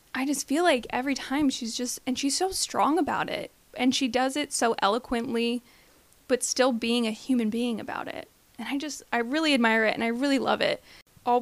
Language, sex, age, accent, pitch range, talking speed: English, female, 20-39, American, 235-280 Hz, 215 wpm